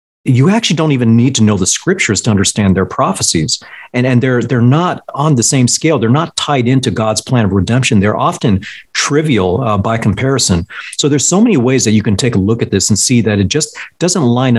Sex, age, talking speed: male, 40-59, 230 wpm